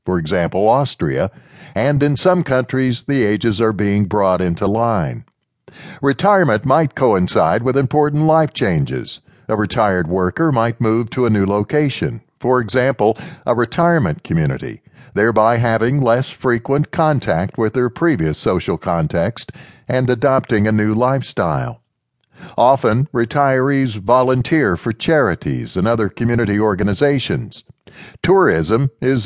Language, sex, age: English, male, 60-79